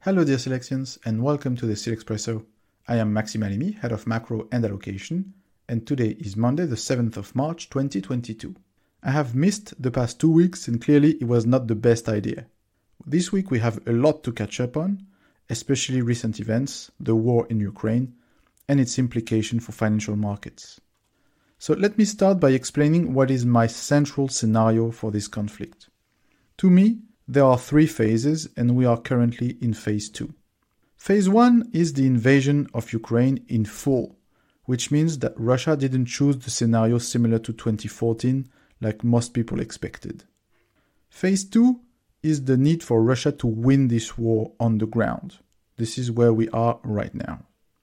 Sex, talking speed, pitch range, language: male, 170 wpm, 115-145 Hz, English